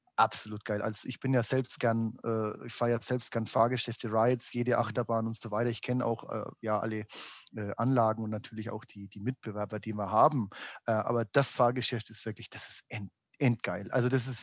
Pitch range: 115-145 Hz